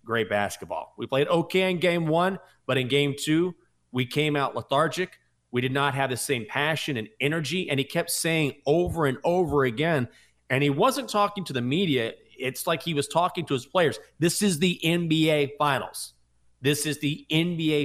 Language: English